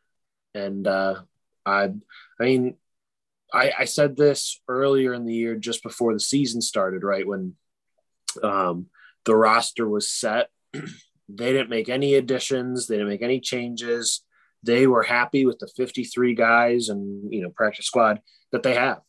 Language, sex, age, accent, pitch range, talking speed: English, male, 20-39, American, 105-130 Hz, 155 wpm